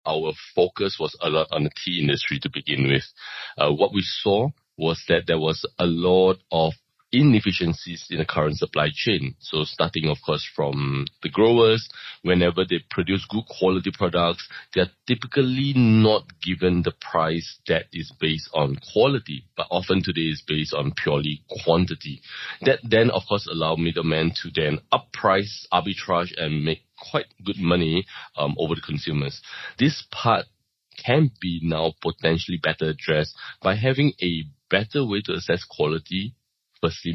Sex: male